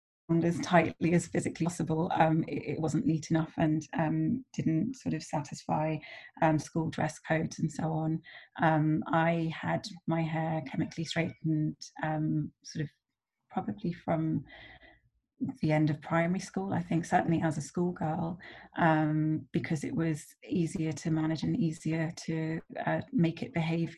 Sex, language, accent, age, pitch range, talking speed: female, English, British, 30-49, 155-165 Hz, 150 wpm